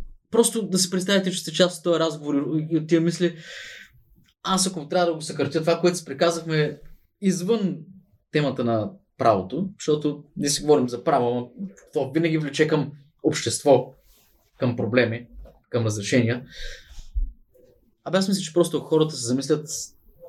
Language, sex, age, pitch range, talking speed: Bulgarian, male, 20-39, 125-170 Hz, 155 wpm